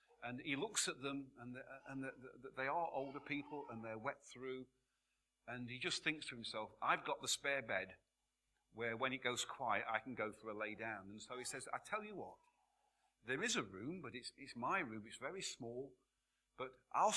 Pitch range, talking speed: 120-165 Hz, 220 wpm